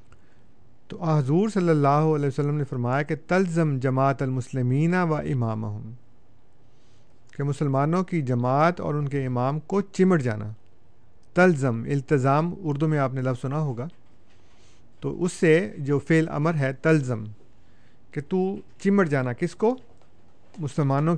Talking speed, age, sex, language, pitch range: 140 wpm, 50-69, male, Urdu, 125-170 Hz